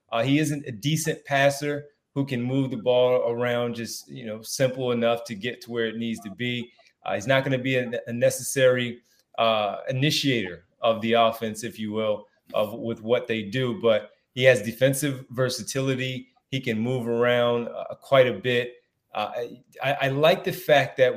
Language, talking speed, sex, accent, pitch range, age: English, 190 wpm, male, American, 115-145 Hz, 30-49